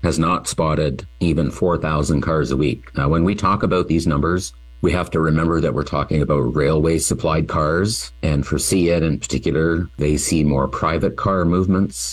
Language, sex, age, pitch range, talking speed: English, male, 50-69, 65-85 Hz, 185 wpm